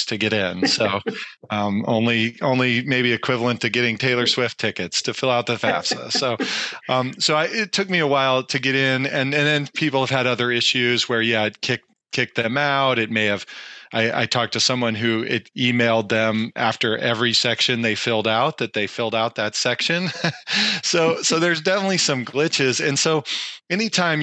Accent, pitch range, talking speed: American, 115-140 Hz, 195 wpm